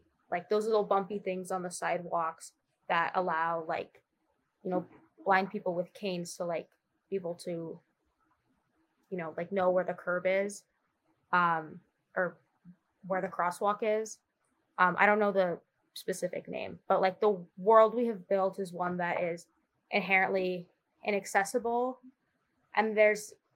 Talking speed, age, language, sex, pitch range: 150 wpm, 20-39, English, female, 185-215 Hz